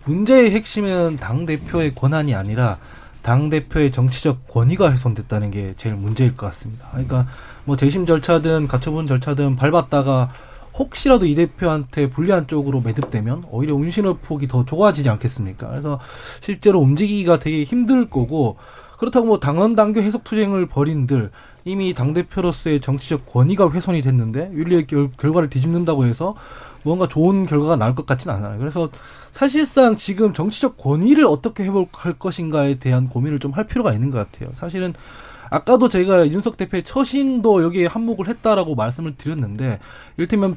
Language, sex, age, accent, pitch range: Korean, male, 20-39, native, 130-190 Hz